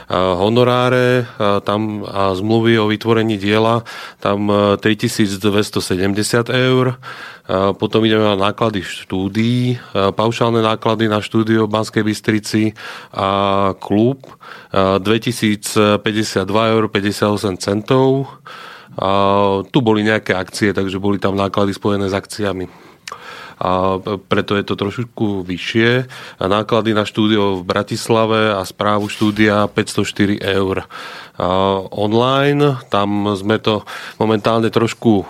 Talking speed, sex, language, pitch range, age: 100 wpm, male, Slovak, 100-115 Hz, 30-49